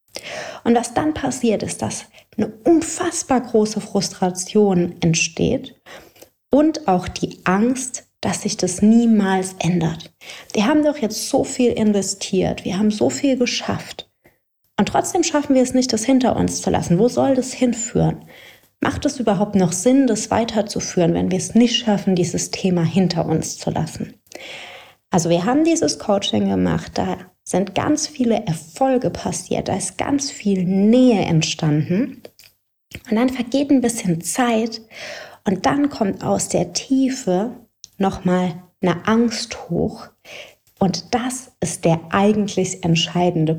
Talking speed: 145 wpm